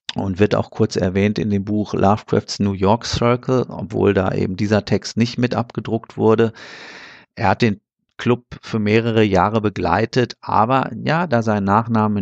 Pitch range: 100-110 Hz